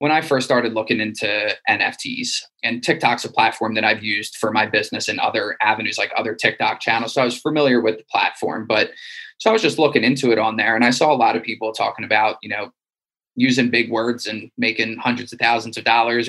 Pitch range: 115-130 Hz